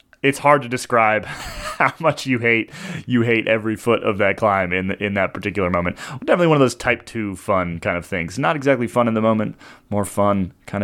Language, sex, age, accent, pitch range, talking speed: English, male, 30-49, American, 100-125 Hz, 220 wpm